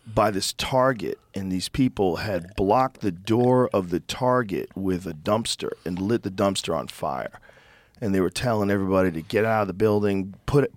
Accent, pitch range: American, 95-120 Hz